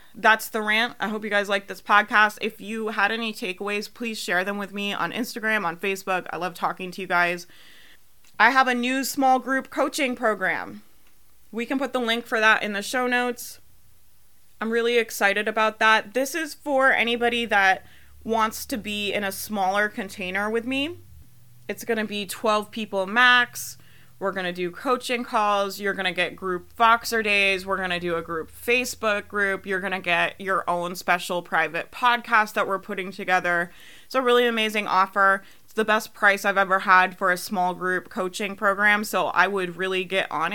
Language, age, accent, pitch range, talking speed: English, 20-39, American, 185-225 Hz, 195 wpm